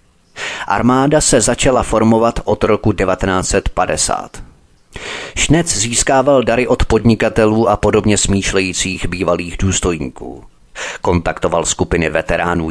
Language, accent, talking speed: Czech, native, 95 wpm